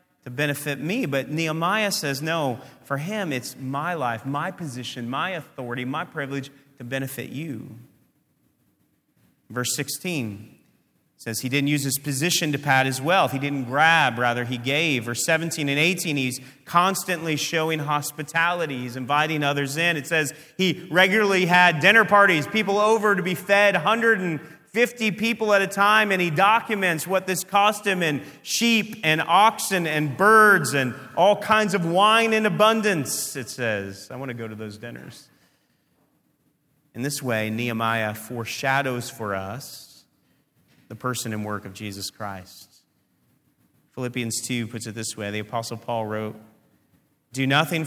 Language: English